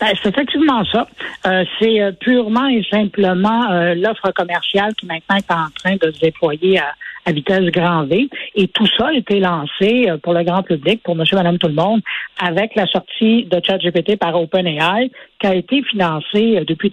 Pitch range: 175-220 Hz